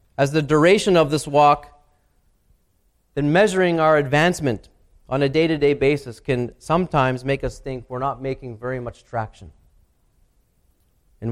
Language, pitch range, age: English, 115-160 Hz, 30-49